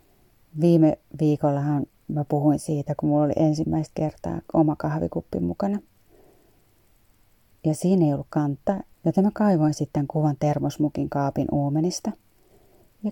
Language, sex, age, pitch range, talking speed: Finnish, female, 30-49, 150-170 Hz, 125 wpm